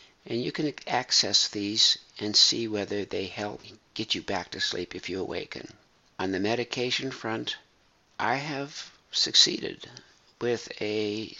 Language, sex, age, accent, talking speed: English, male, 60-79, American, 140 wpm